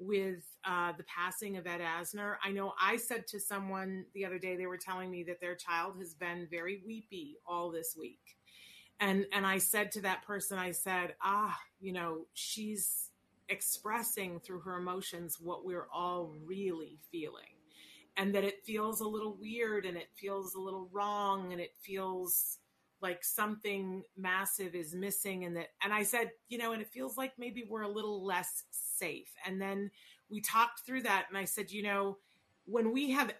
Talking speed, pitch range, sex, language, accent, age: 185 wpm, 185-215 Hz, female, English, American, 30-49